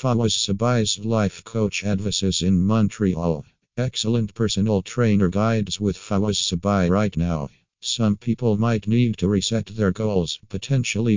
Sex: male